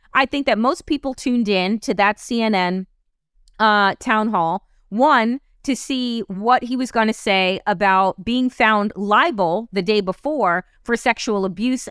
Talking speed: 160 wpm